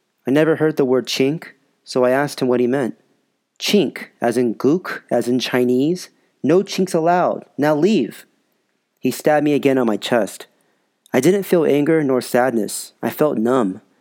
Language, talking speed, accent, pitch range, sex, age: English, 175 wpm, American, 110-135 Hz, male, 30-49